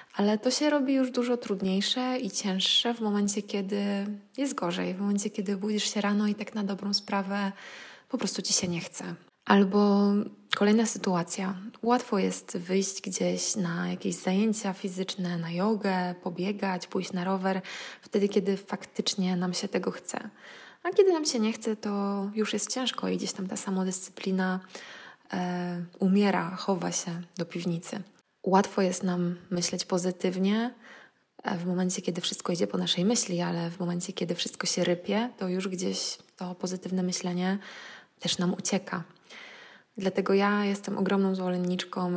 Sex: female